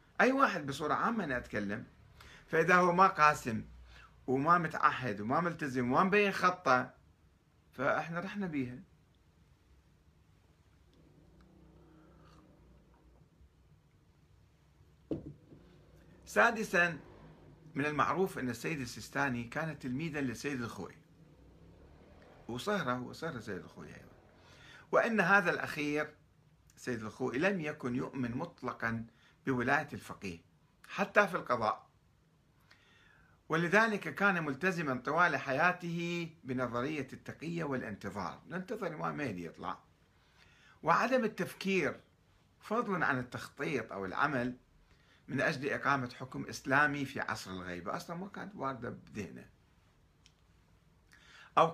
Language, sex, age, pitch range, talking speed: Arabic, male, 50-69, 120-165 Hz, 95 wpm